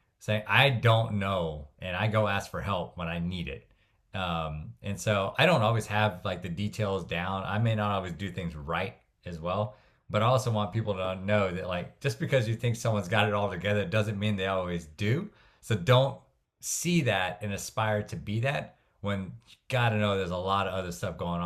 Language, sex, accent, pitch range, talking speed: English, male, American, 90-110 Hz, 215 wpm